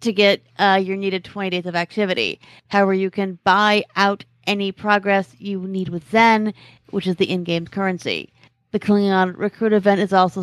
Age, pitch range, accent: 40-59, 185-210 Hz, American